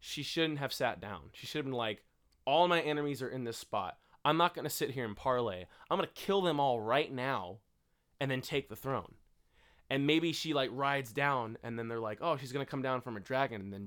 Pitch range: 110-145 Hz